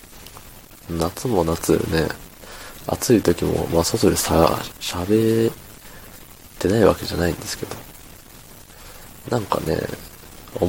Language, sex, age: Japanese, male, 20-39